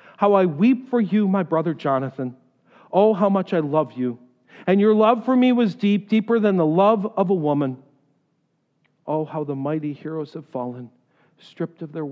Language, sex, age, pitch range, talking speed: English, male, 50-69, 155-230 Hz, 190 wpm